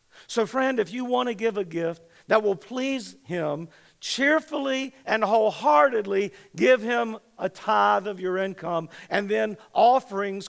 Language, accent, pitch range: English, American, 170-240 Hz